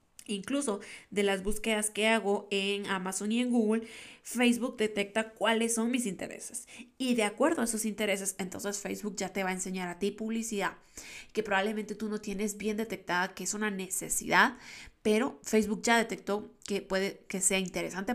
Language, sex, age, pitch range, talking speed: Spanish, female, 20-39, 190-235 Hz, 175 wpm